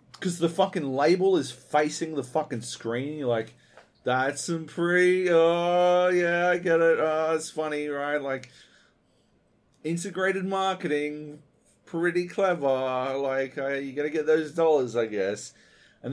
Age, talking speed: 30-49, 140 wpm